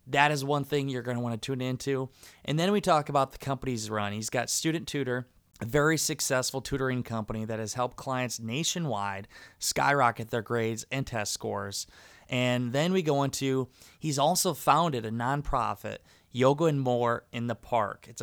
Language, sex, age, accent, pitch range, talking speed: English, male, 20-39, American, 115-145 Hz, 185 wpm